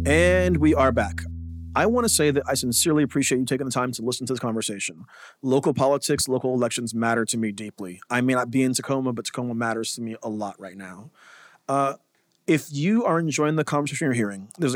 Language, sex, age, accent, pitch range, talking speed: English, male, 30-49, American, 120-145 Hz, 220 wpm